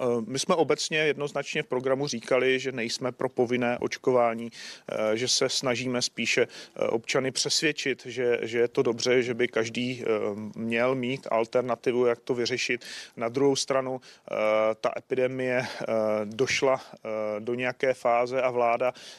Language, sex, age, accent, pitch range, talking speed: Czech, male, 40-59, native, 115-130 Hz, 135 wpm